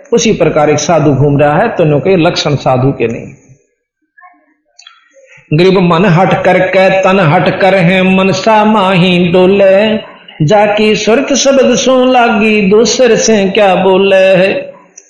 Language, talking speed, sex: Hindi, 135 wpm, male